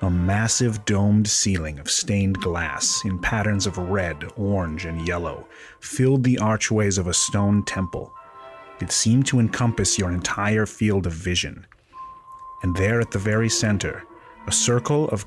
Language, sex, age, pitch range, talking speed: English, male, 30-49, 95-120 Hz, 155 wpm